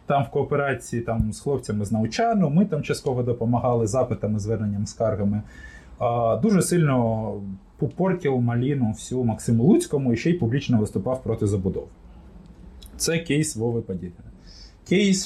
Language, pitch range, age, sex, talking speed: Ukrainian, 115-150 Hz, 20-39, male, 135 wpm